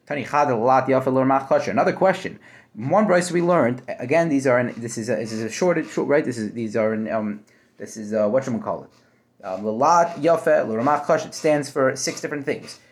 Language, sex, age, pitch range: English, male, 30-49, 130-180 Hz